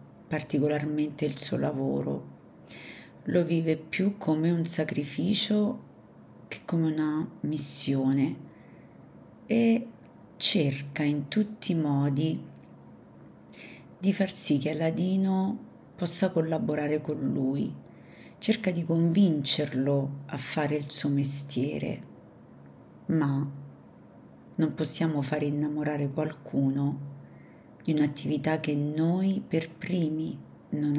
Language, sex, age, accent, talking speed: Italian, female, 40-59, native, 95 wpm